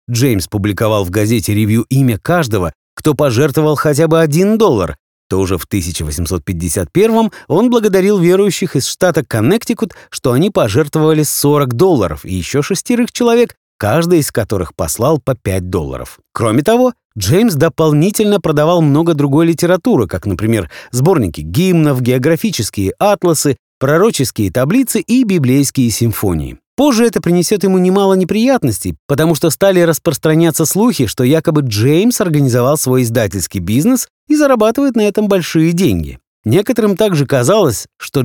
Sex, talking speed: male, 135 wpm